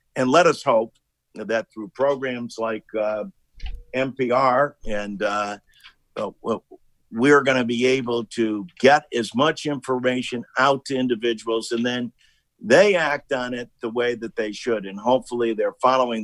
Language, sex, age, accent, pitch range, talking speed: English, male, 50-69, American, 110-135 Hz, 145 wpm